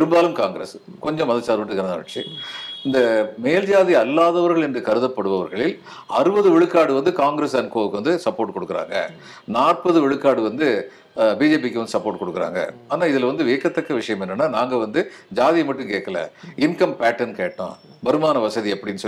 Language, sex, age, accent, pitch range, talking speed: Tamil, male, 50-69, native, 115-170 Hz, 35 wpm